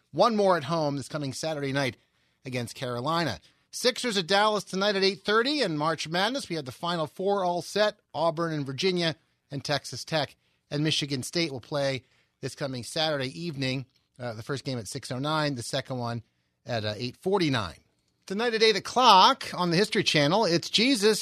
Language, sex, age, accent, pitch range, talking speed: English, male, 40-59, American, 140-195 Hz, 180 wpm